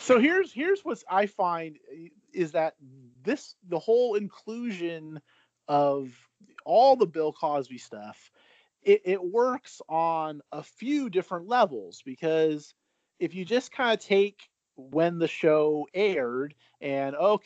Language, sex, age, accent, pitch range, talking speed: English, male, 30-49, American, 125-165 Hz, 130 wpm